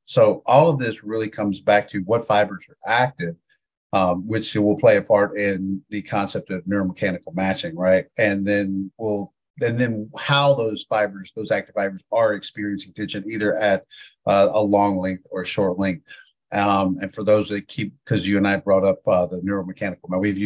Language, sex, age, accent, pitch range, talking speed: English, male, 40-59, American, 95-110 Hz, 190 wpm